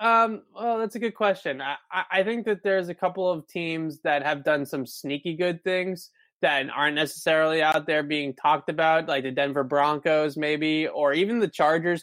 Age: 20-39